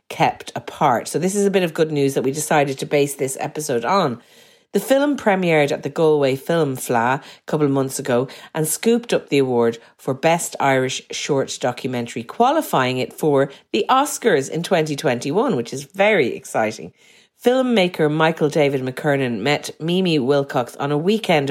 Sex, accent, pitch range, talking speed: female, Irish, 135-190 Hz, 175 wpm